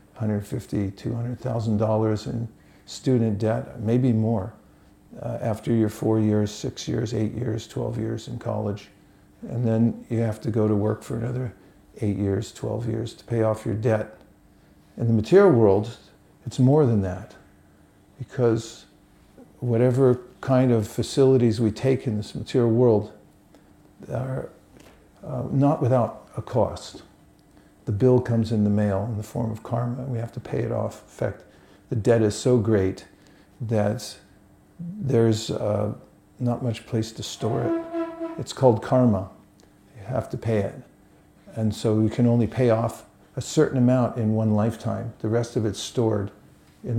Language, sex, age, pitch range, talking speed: English, male, 50-69, 105-125 Hz, 155 wpm